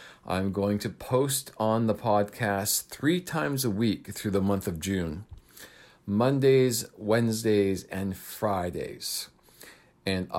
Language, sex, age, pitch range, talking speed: English, male, 40-59, 95-115 Hz, 120 wpm